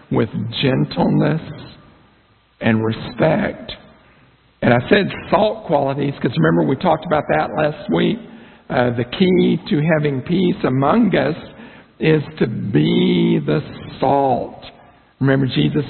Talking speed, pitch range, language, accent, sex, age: 120 wpm, 120-155 Hz, English, American, male, 60-79